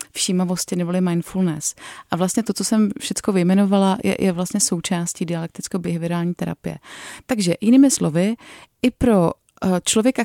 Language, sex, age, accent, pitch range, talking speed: Czech, female, 30-49, native, 190-225 Hz, 140 wpm